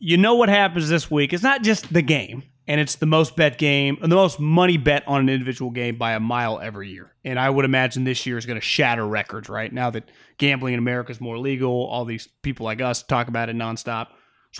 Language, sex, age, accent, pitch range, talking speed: English, male, 30-49, American, 130-200 Hz, 250 wpm